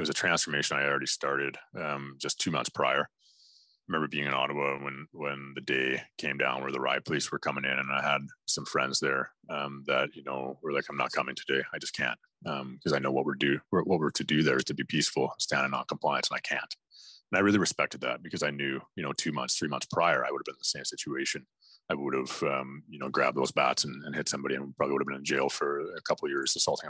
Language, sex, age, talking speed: English, male, 30-49, 270 wpm